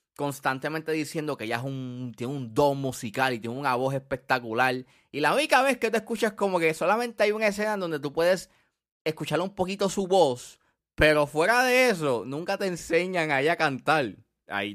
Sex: male